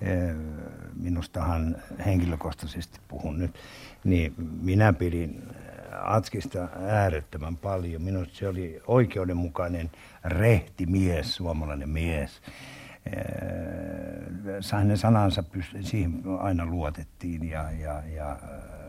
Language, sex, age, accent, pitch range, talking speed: Finnish, male, 60-79, native, 80-95 Hz, 85 wpm